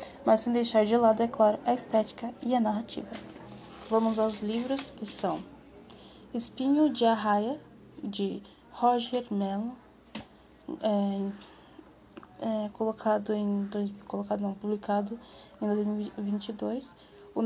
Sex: female